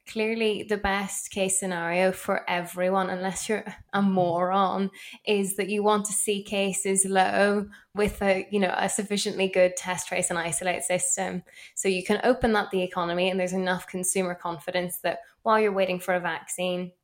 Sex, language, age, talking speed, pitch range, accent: female, English, 10-29, 175 wpm, 175-195 Hz, British